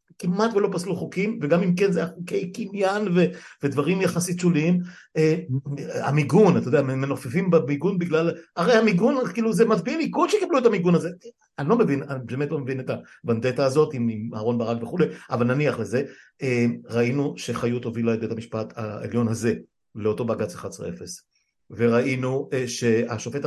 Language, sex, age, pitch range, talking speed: Hebrew, male, 60-79, 120-175 Hz, 155 wpm